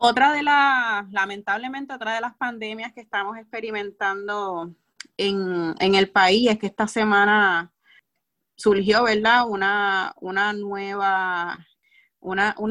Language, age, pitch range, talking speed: Spanish, 30-49, 180-210 Hz, 105 wpm